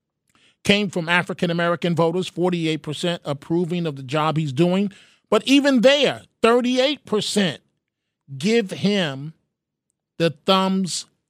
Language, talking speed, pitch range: English, 100 wpm, 180-250 Hz